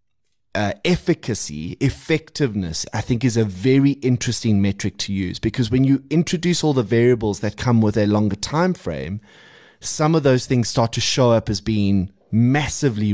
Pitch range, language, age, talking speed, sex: 105-135 Hz, English, 20-39, 170 wpm, male